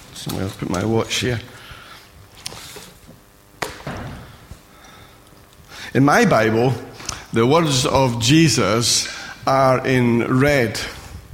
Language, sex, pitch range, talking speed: English, male, 115-140 Hz, 80 wpm